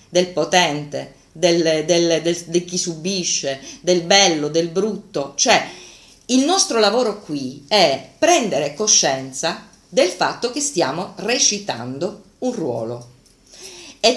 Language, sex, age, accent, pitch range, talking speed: Italian, female, 40-59, native, 165-215 Hz, 110 wpm